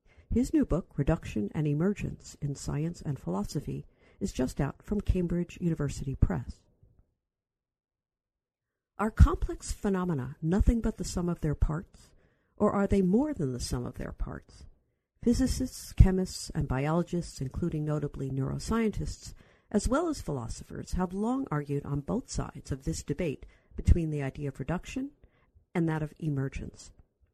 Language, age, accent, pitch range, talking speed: English, 50-69, American, 140-205 Hz, 145 wpm